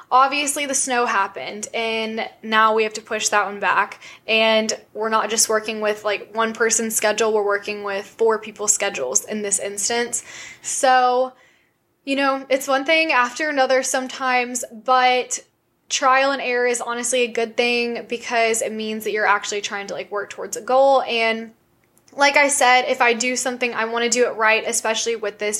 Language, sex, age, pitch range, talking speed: English, female, 10-29, 210-250 Hz, 190 wpm